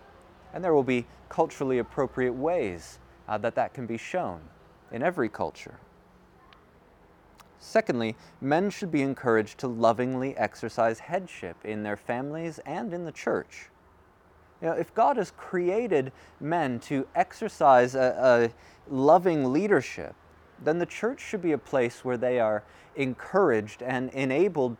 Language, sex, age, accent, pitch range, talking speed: English, male, 30-49, American, 95-135 Hz, 135 wpm